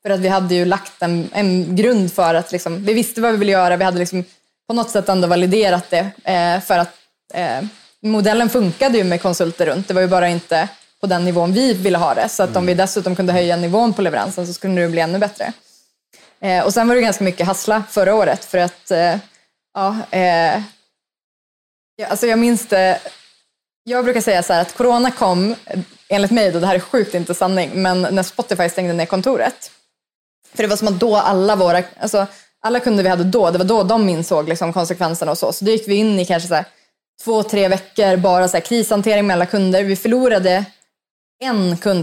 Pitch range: 180-215 Hz